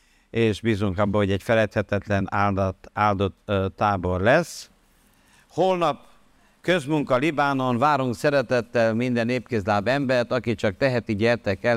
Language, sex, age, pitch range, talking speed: Hungarian, male, 50-69, 105-140 Hz, 115 wpm